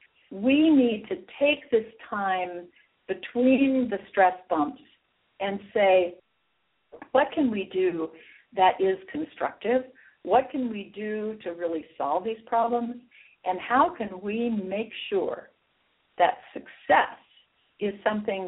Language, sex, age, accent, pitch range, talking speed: English, female, 60-79, American, 175-235 Hz, 125 wpm